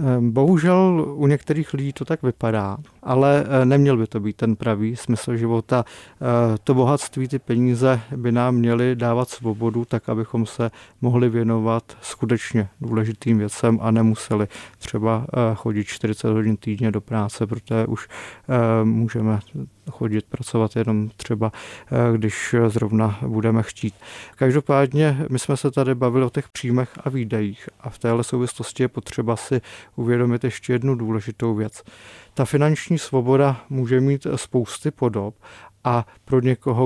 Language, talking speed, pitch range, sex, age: Czech, 140 wpm, 115-130 Hz, male, 30-49